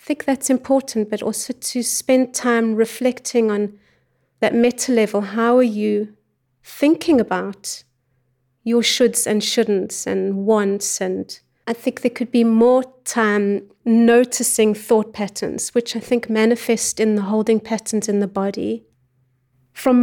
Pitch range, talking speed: 205-245 Hz, 140 wpm